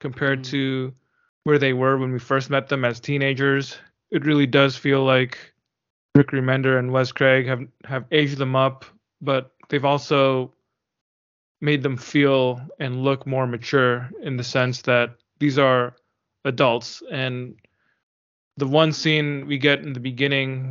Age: 20-39